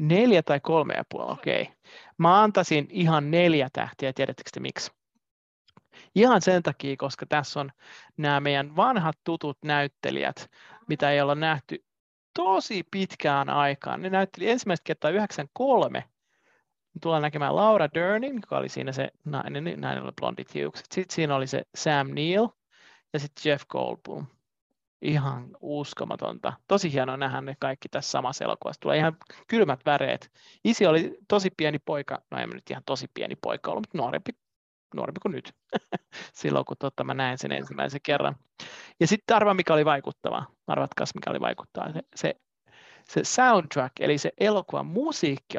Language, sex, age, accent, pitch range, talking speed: Finnish, male, 30-49, native, 140-190 Hz, 155 wpm